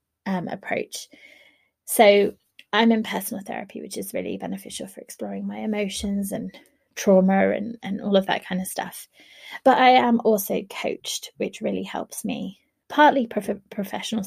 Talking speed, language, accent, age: 155 wpm, English, British, 20-39